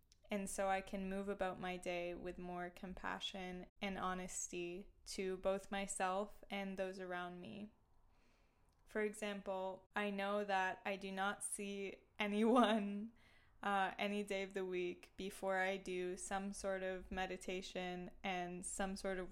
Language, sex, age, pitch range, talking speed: English, female, 10-29, 185-200 Hz, 145 wpm